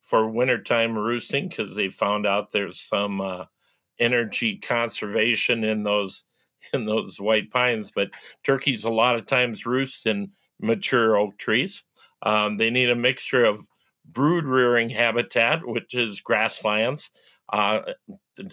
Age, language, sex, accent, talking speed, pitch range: 50-69, English, male, American, 135 wpm, 105-130 Hz